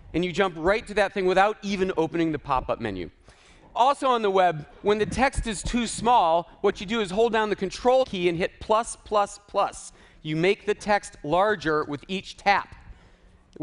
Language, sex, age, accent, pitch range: Chinese, male, 40-59, American, 165-225 Hz